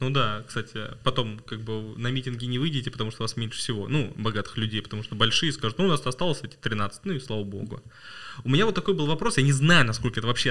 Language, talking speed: Russian, 255 wpm